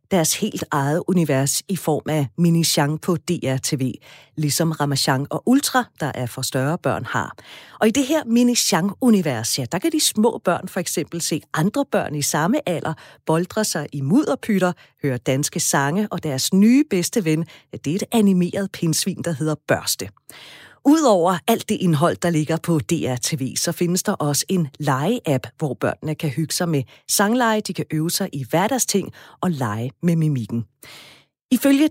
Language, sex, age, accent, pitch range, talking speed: Danish, female, 40-59, native, 145-195 Hz, 175 wpm